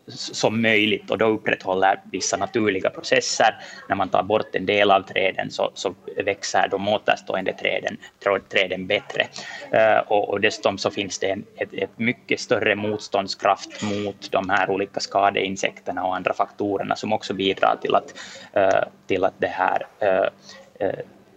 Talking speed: 160 wpm